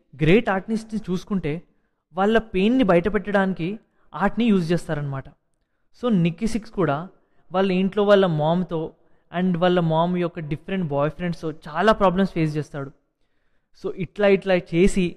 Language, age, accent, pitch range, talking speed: English, 20-39, Indian, 160-200 Hz, 95 wpm